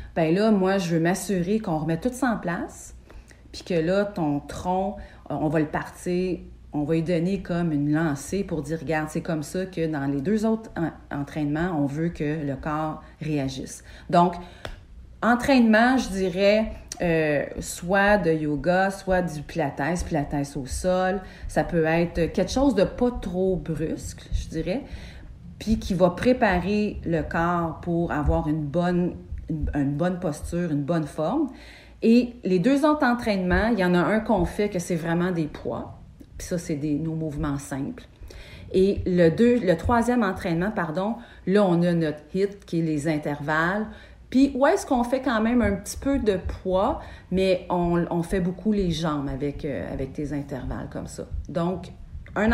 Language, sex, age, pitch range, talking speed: French, female, 40-59, 155-200 Hz, 180 wpm